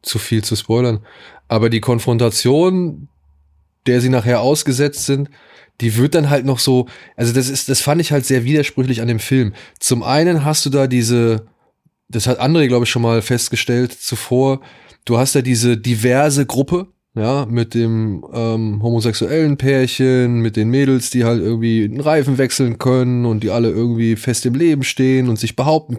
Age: 20-39